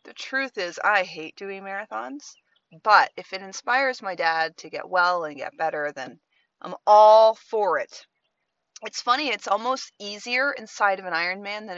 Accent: American